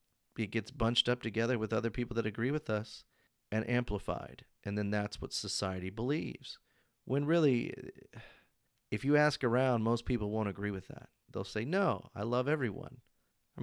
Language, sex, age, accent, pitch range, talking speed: English, male, 40-59, American, 100-125 Hz, 170 wpm